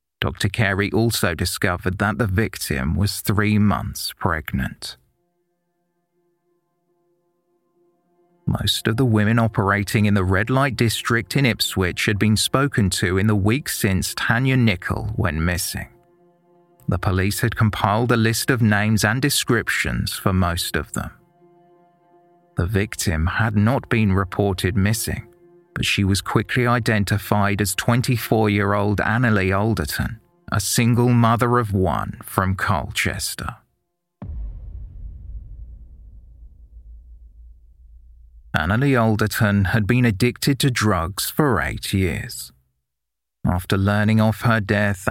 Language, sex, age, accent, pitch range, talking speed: English, male, 30-49, British, 95-120 Hz, 115 wpm